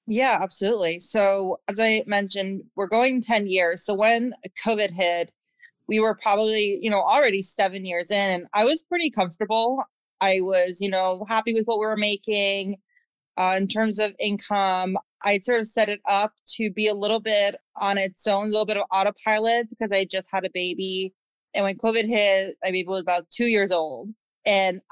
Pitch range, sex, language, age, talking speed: 190-225 Hz, female, English, 20-39, 195 wpm